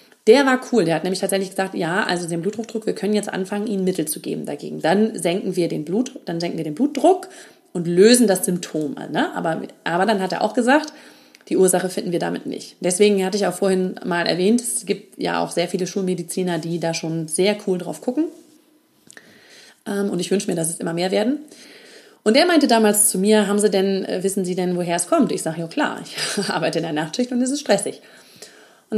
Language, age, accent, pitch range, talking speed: German, 30-49, German, 170-220 Hz, 225 wpm